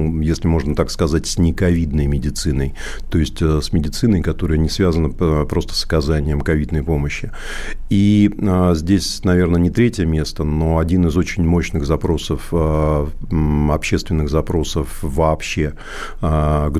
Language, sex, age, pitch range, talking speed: Russian, male, 50-69, 75-90 Hz, 125 wpm